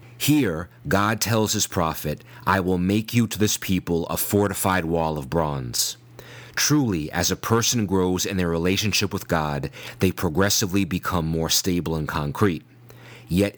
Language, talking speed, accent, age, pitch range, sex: English, 155 wpm, American, 30-49, 85-105 Hz, male